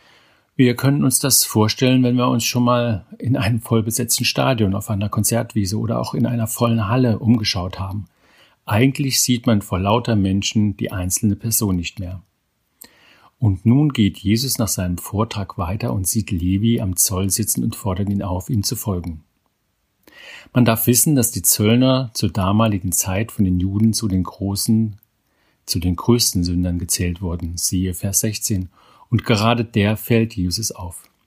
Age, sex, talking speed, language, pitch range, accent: 50-69, male, 165 wpm, German, 95-120 Hz, German